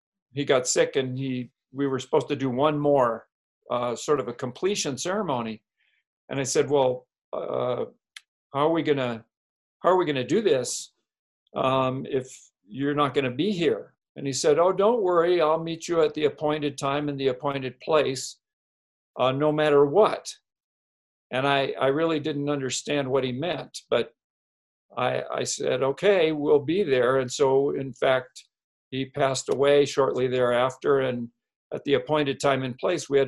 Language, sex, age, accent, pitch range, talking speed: English, male, 50-69, American, 125-145 Hz, 175 wpm